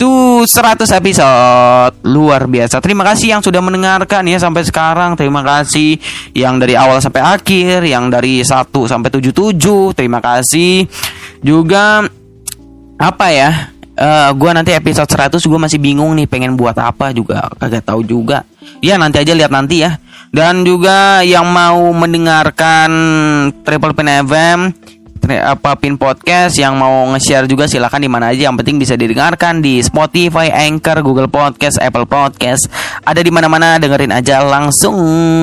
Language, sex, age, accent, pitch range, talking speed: Indonesian, male, 20-39, native, 135-175 Hz, 145 wpm